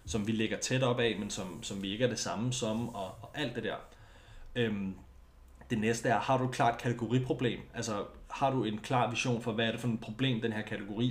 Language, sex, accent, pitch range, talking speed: Danish, male, native, 105-120 Hz, 245 wpm